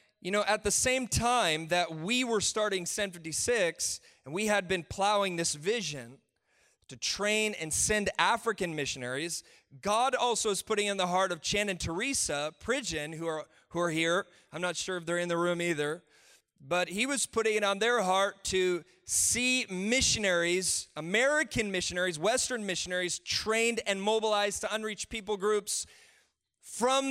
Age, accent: 20-39, American